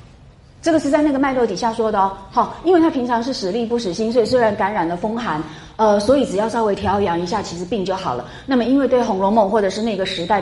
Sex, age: female, 30-49